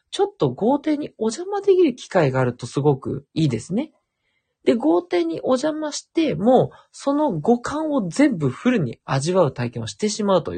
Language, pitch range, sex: Japanese, 130-215 Hz, male